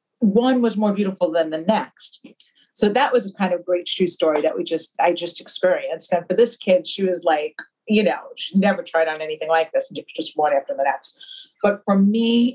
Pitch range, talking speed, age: 155-200 Hz, 225 wpm, 40-59